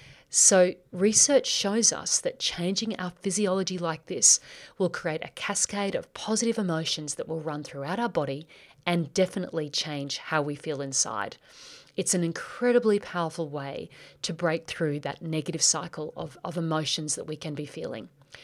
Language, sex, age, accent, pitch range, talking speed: English, female, 40-59, Australian, 150-185 Hz, 160 wpm